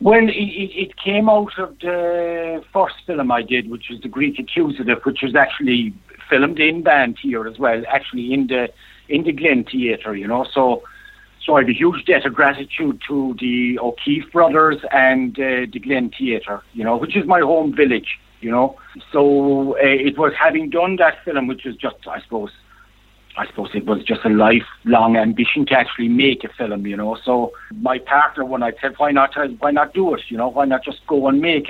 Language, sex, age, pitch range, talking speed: English, male, 60-79, 120-165 Hz, 210 wpm